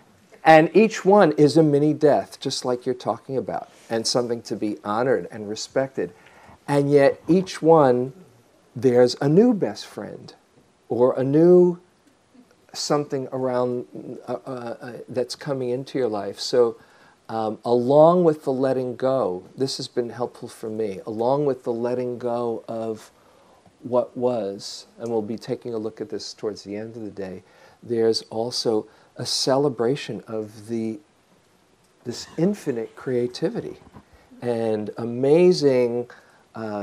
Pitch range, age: 115-140 Hz, 50-69